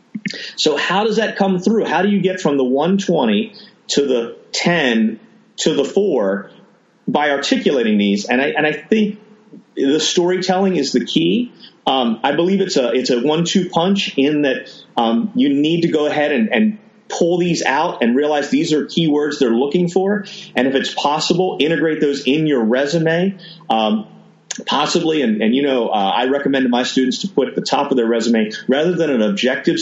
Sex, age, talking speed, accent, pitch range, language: male, 30-49, 190 wpm, American, 135-190 Hz, English